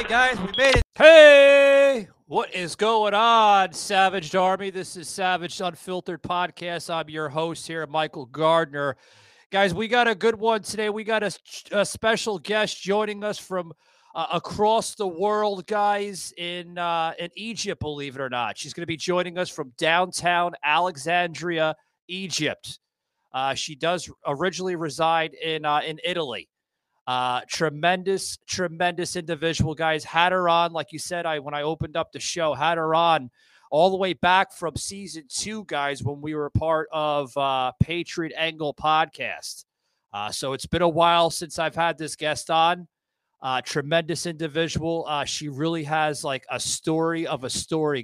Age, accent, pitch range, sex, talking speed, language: 30-49, American, 150-185 Hz, male, 165 wpm, English